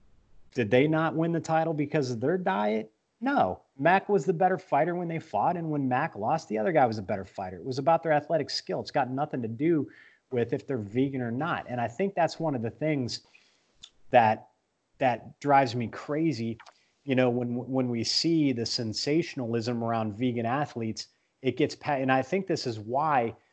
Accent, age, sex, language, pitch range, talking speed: American, 30-49, male, English, 120-150 Hz, 200 wpm